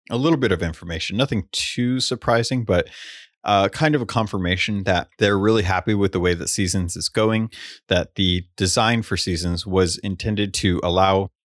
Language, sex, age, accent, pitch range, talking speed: English, male, 30-49, American, 85-105 Hz, 175 wpm